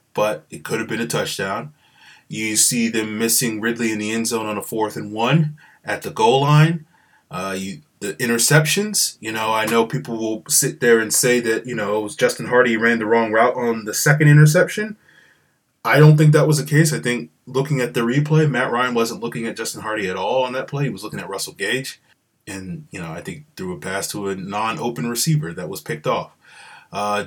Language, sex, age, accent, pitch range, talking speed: English, male, 20-39, American, 110-150 Hz, 225 wpm